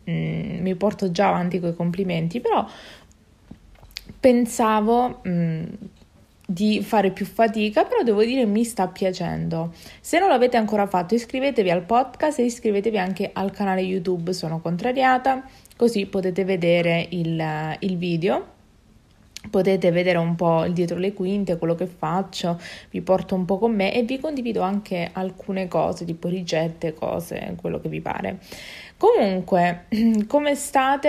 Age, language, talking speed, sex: 20-39, Italian, 145 wpm, female